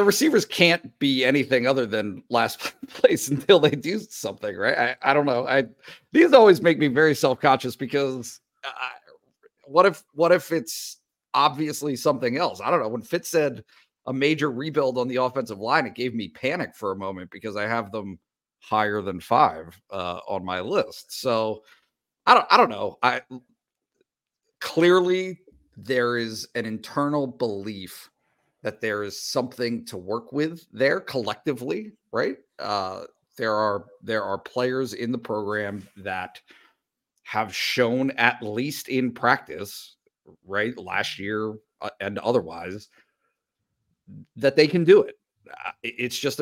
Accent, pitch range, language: American, 105-150 Hz, English